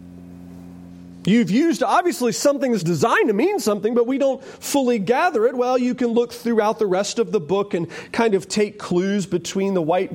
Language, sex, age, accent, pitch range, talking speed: English, male, 40-59, American, 140-215 Hz, 195 wpm